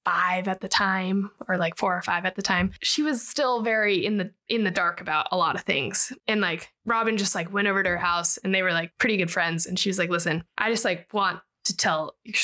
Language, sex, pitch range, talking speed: English, female, 185-230 Hz, 265 wpm